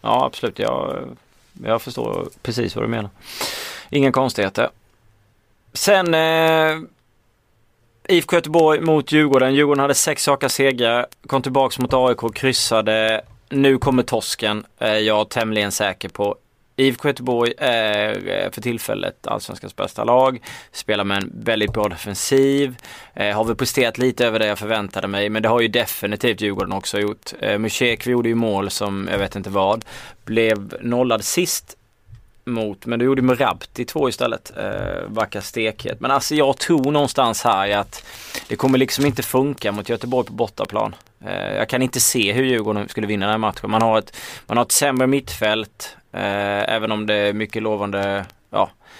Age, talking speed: 20-39, 165 wpm